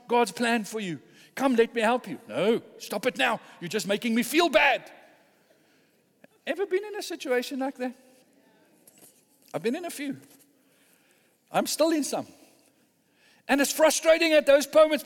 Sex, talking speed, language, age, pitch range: male, 165 wpm, English, 60-79, 170-270 Hz